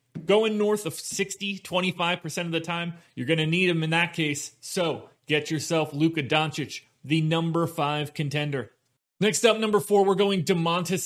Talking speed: 175 wpm